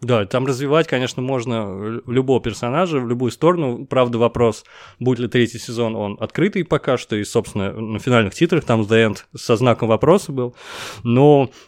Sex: male